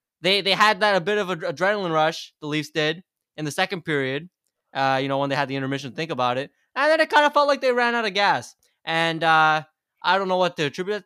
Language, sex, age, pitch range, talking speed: English, male, 20-39, 150-200 Hz, 265 wpm